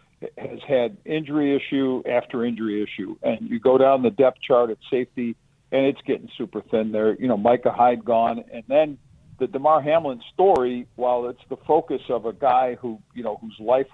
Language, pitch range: English, 120-145 Hz